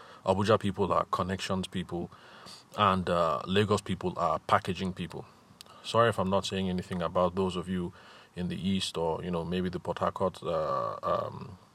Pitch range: 90-100 Hz